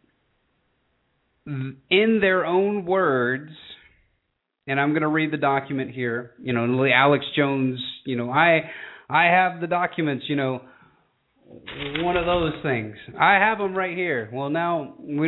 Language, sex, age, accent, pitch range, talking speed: English, male, 30-49, American, 130-165 Hz, 145 wpm